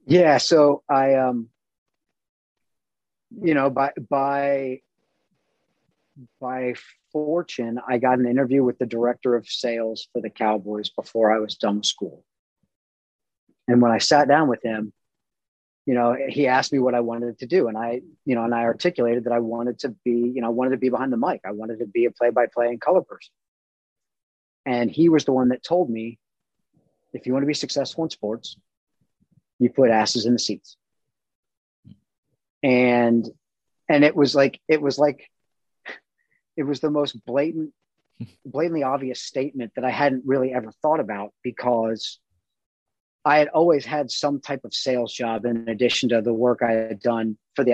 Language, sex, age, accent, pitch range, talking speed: English, male, 40-59, American, 115-140 Hz, 175 wpm